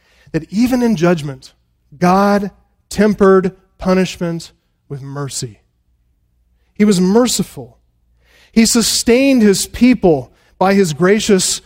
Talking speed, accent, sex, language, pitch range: 100 wpm, American, male, English, 130-200 Hz